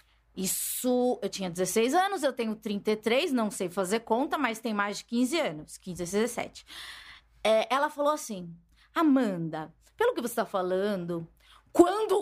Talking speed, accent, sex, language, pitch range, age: 150 wpm, Brazilian, female, Portuguese, 210-310 Hz, 20-39